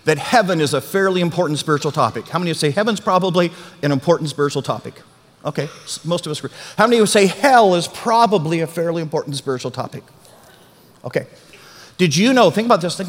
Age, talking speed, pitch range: 50-69, 205 wpm, 150-195 Hz